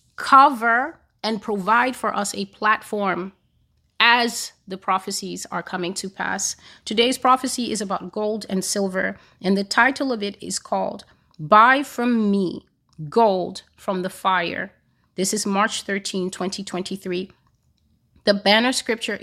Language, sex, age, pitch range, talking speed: English, female, 30-49, 185-225 Hz, 135 wpm